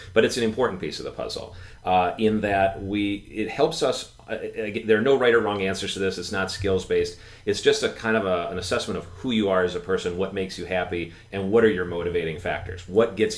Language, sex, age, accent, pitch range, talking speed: English, male, 40-59, American, 90-110 Hz, 250 wpm